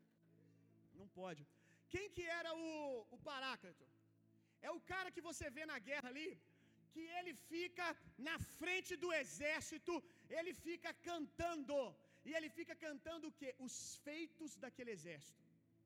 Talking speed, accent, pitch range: 140 wpm, Brazilian, 225-325 Hz